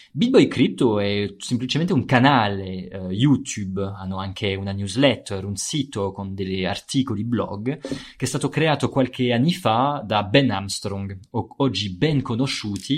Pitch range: 100-130 Hz